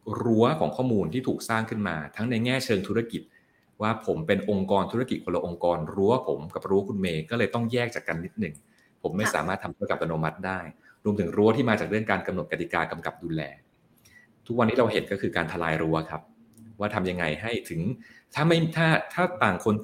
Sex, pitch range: male, 90-115 Hz